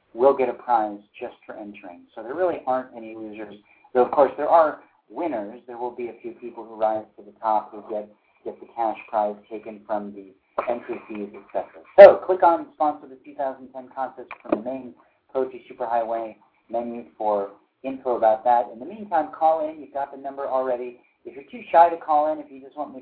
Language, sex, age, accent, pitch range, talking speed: English, male, 40-59, American, 105-130 Hz, 215 wpm